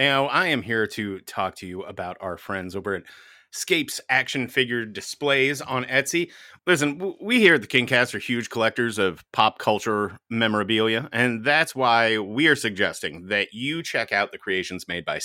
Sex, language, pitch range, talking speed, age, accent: male, English, 110-145 Hz, 175 wpm, 30-49, American